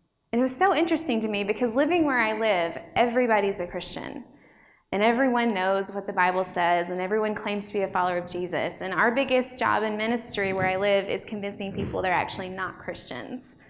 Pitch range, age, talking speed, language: 185-250 Hz, 20-39, 205 wpm, English